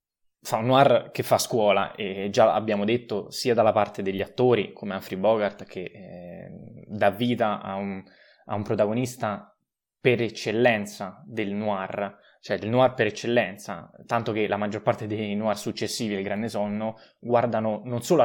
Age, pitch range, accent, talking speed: 20-39, 105-130 Hz, native, 160 wpm